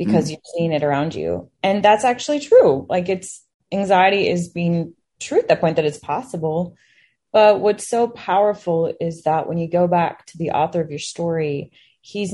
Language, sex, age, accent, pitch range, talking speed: English, female, 20-39, American, 160-195 Hz, 190 wpm